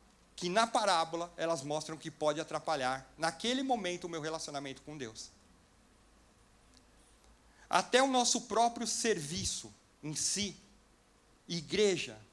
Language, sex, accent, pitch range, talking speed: Portuguese, male, Brazilian, 155-200 Hz, 110 wpm